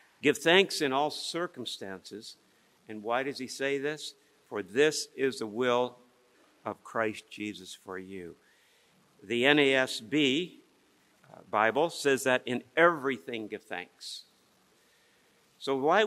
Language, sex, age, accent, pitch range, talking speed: English, male, 60-79, American, 120-155 Hz, 125 wpm